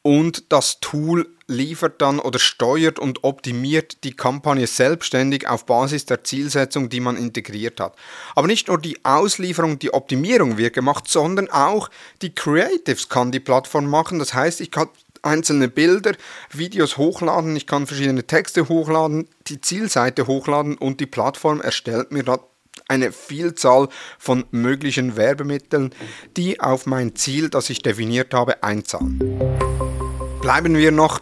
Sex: male